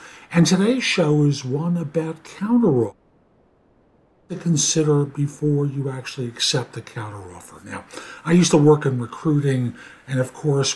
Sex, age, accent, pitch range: male, 60-79, American, 130-195 Hz